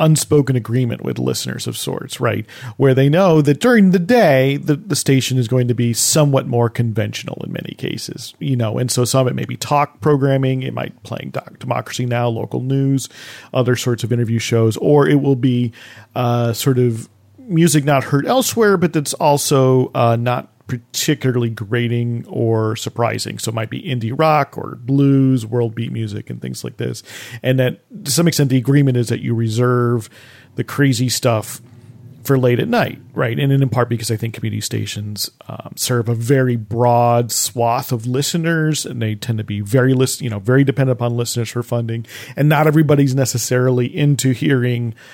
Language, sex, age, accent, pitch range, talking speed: English, male, 40-59, American, 120-140 Hz, 185 wpm